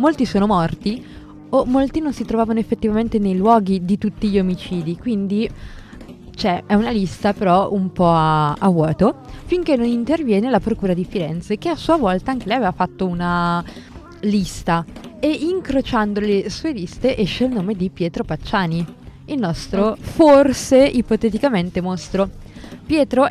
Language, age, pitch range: Italian, 20-39, 185-235 Hz